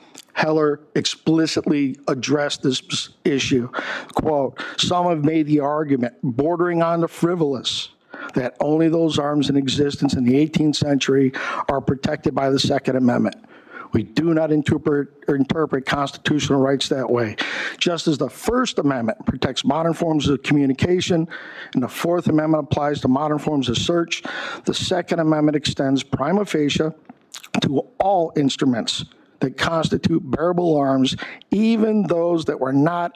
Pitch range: 135-160 Hz